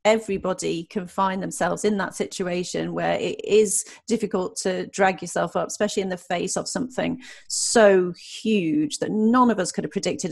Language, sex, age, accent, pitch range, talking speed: English, female, 30-49, British, 180-220 Hz, 175 wpm